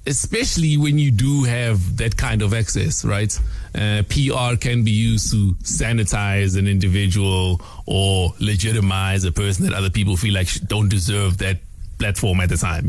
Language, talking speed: English, 165 wpm